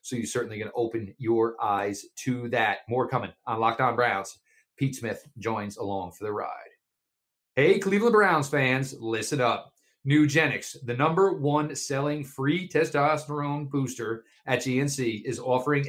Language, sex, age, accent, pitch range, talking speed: English, male, 40-59, American, 120-155 Hz, 155 wpm